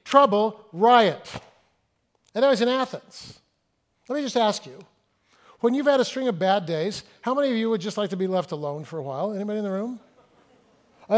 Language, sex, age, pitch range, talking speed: English, male, 50-69, 200-260 Hz, 210 wpm